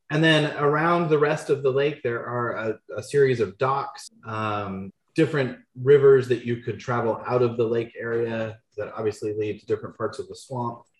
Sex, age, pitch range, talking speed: male, 30-49, 110-135 Hz, 195 wpm